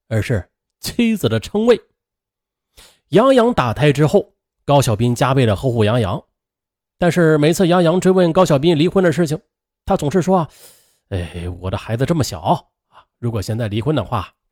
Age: 30-49